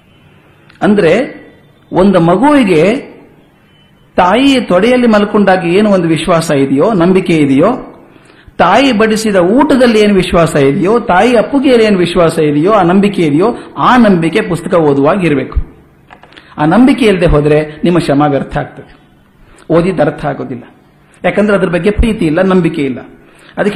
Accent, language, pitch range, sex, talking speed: native, Kannada, 160-225 Hz, male, 120 wpm